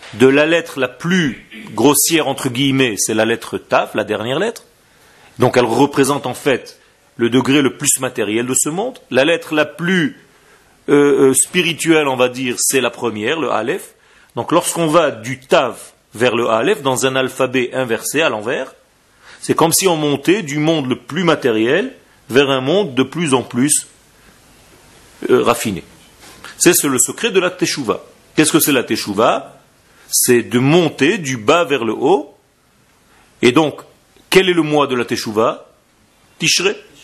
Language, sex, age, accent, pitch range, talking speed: French, male, 40-59, French, 125-155 Hz, 170 wpm